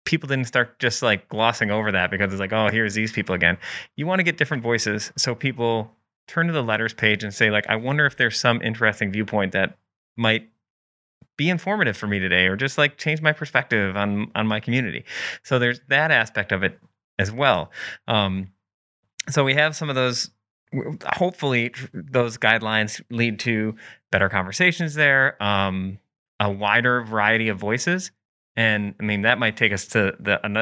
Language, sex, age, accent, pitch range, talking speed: English, male, 30-49, American, 100-120 Hz, 190 wpm